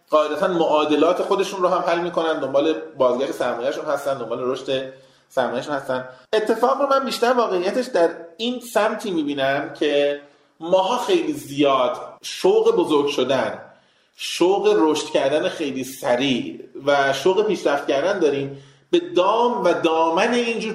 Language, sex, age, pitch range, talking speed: Persian, male, 30-49, 140-230 Hz, 135 wpm